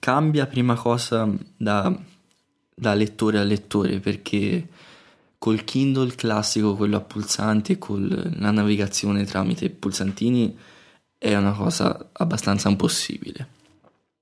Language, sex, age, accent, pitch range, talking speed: Italian, male, 20-39, native, 100-115 Hz, 105 wpm